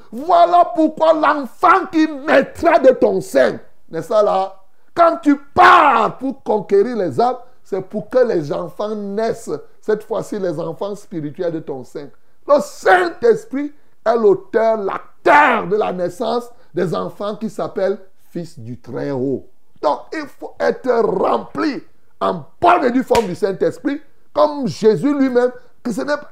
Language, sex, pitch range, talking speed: French, male, 165-245 Hz, 150 wpm